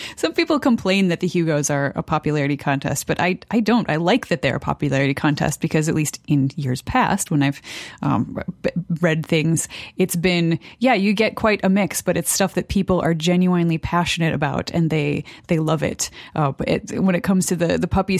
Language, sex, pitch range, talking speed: English, female, 155-195 Hz, 210 wpm